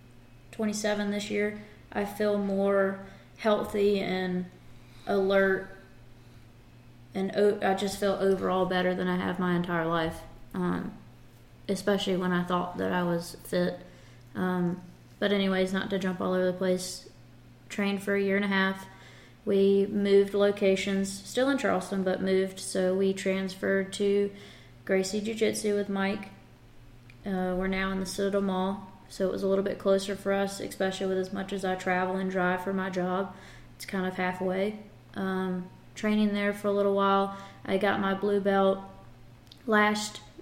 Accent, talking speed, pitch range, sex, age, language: American, 160 wpm, 180-200 Hz, female, 20-39, English